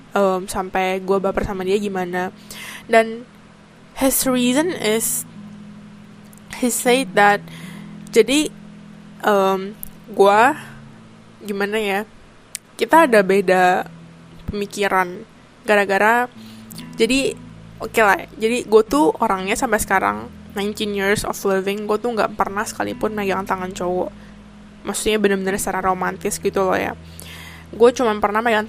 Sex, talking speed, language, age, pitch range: female, 120 wpm, Indonesian, 10-29, 195-220 Hz